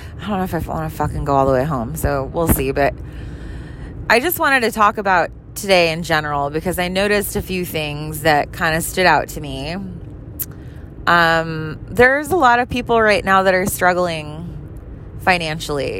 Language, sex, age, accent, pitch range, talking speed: English, female, 20-39, American, 155-195 Hz, 190 wpm